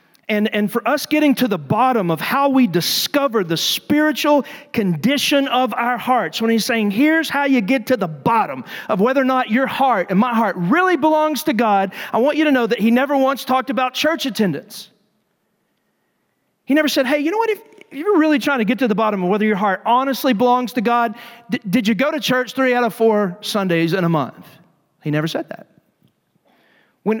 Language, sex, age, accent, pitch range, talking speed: English, male, 40-59, American, 200-265 Hz, 215 wpm